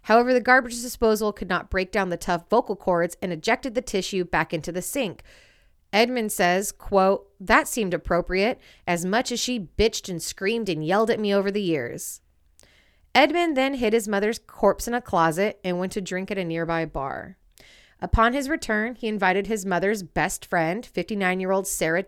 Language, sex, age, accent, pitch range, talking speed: English, female, 30-49, American, 175-220 Hz, 190 wpm